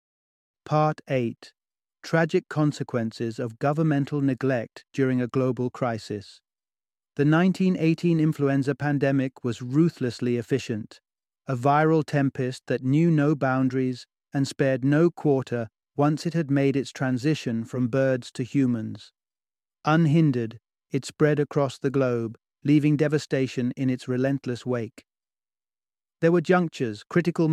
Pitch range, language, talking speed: 125-150 Hz, English, 120 wpm